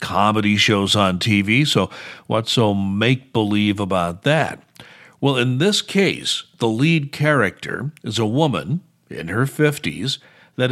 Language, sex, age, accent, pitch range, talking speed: English, male, 60-79, American, 110-145 Hz, 135 wpm